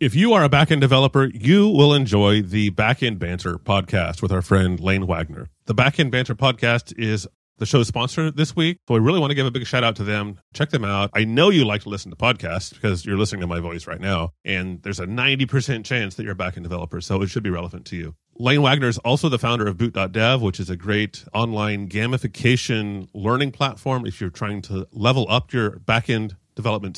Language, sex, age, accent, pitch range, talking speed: English, male, 30-49, American, 95-130 Hz, 220 wpm